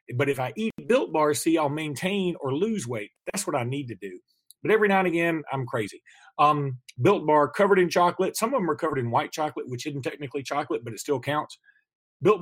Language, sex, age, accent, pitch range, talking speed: English, male, 40-59, American, 140-185 Hz, 230 wpm